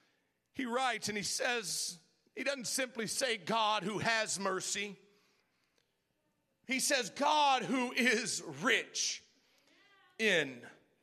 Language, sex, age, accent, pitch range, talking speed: English, male, 50-69, American, 230-340 Hz, 110 wpm